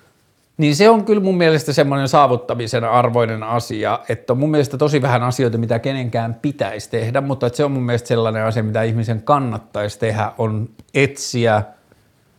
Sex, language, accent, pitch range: male, Finnish, native, 110-130 Hz